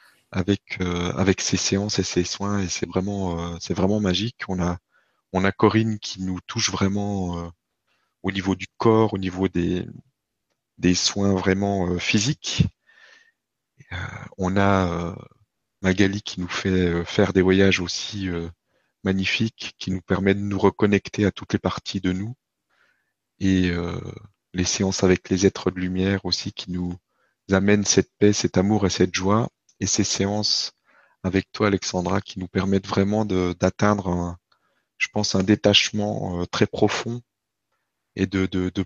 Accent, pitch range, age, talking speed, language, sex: French, 95-105 Hz, 30-49, 165 wpm, French, male